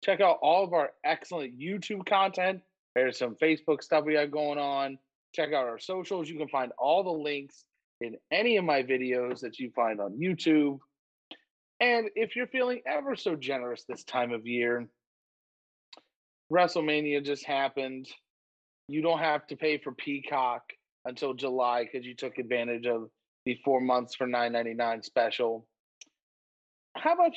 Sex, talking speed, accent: male, 160 wpm, American